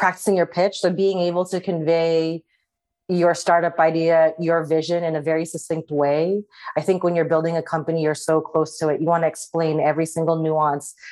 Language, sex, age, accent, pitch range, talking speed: English, female, 30-49, American, 150-165 Hz, 200 wpm